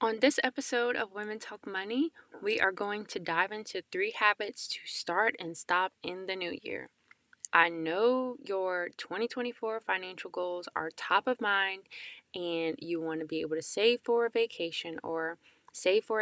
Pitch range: 180-250 Hz